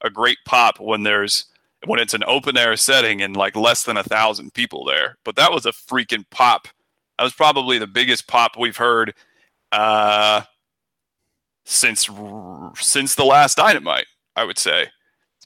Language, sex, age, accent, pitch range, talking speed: English, male, 30-49, American, 110-135 Hz, 165 wpm